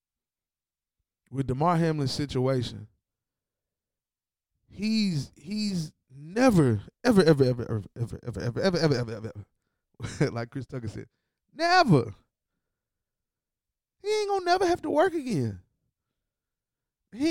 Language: English